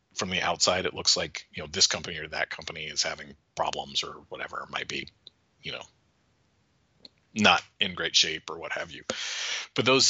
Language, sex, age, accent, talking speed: English, male, 40-59, American, 190 wpm